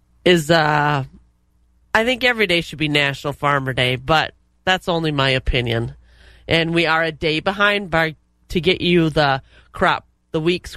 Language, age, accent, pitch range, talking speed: English, 30-49, American, 145-185 Hz, 165 wpm